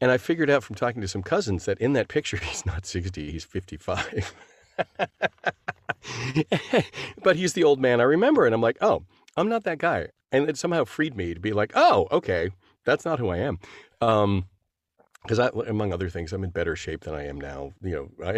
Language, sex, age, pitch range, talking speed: English, male, 50-69, 90-120 Hz, 210 wpm